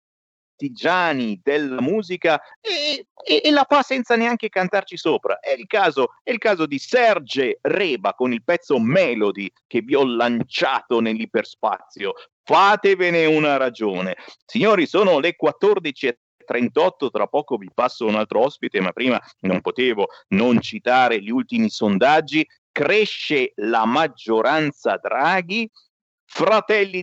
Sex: male